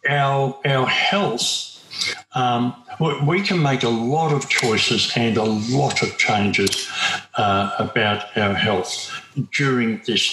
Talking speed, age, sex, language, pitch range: 130 wpm, 60-79, male, English, 110-135 Hz